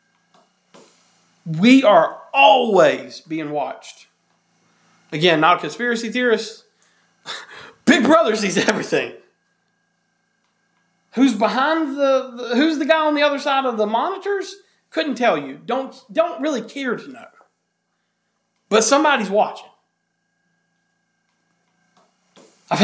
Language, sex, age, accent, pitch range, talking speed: English, male, 40-59, American, 195-265 Hz, 110 wpm